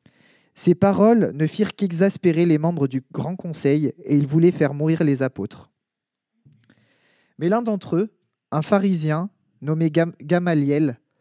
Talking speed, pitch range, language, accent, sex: 135 wpm, 150-190 Hz, French, French, male